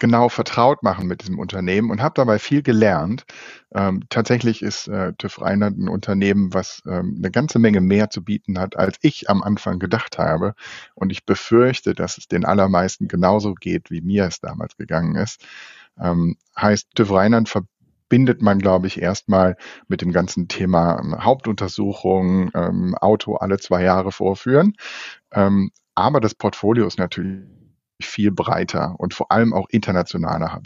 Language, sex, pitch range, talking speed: German, male, 95-110 Hz, 165 wpm